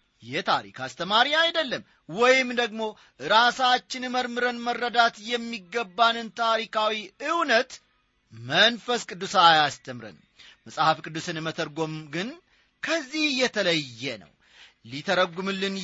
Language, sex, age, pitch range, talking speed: Amharic, male, 40-59, 155-240 Hz, 85 wpm